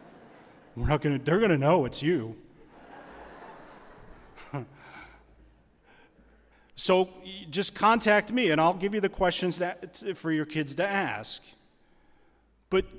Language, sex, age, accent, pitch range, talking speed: English, male, 40-59, American, 150-210 Hz, 120 wpm